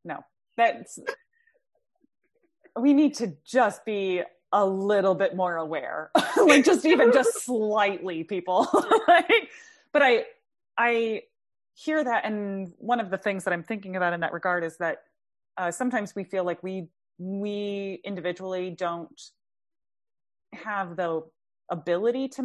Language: English